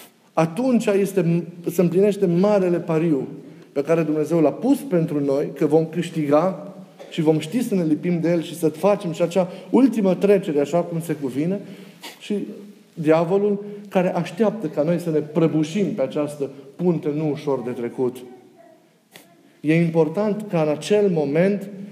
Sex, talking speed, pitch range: male, 155 wpm, 150-200 Hz